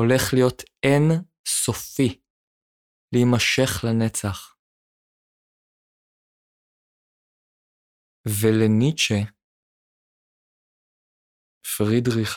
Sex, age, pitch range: male, 20-39, 95-120 Hz